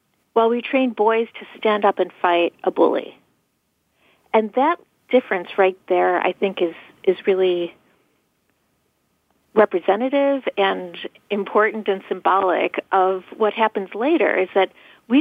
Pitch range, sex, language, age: 190-240 Hz, female, English, 40-59